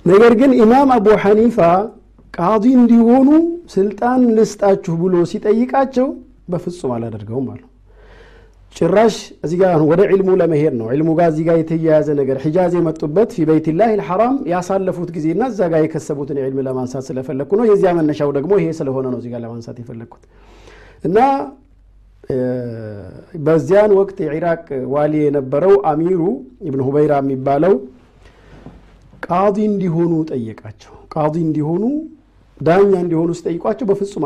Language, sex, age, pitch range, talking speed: Amharic, male, 50-69, 145-215 Hz, 90 wpm